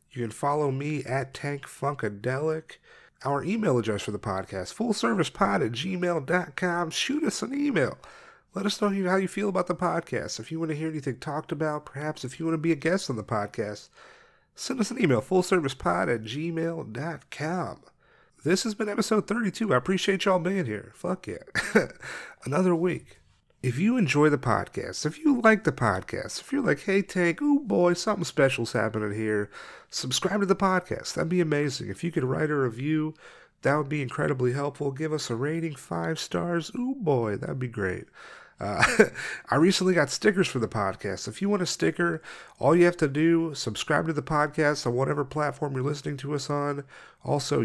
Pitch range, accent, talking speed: 135-180 Hz, American, 190 wpm